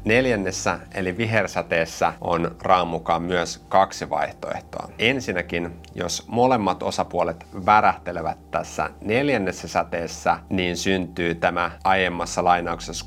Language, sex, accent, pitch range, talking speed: Finnish, male, native, 85-100 Hz, 100 wpm